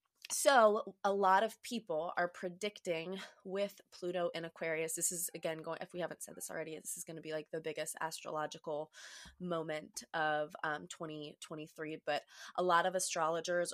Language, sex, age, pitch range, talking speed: English, female, 20-39, 160-180 Hz, 170 wpm